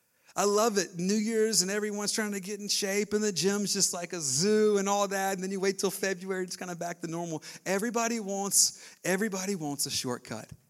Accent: American